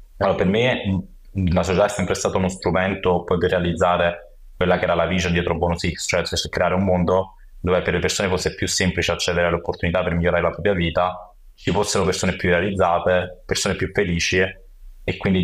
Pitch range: 85-95 Hz